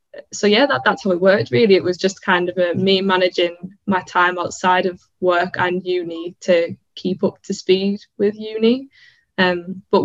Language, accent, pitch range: English, British, 180-195 Hz